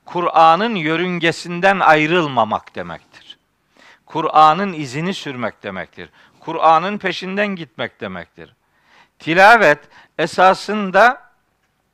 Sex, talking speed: male, 70 wpm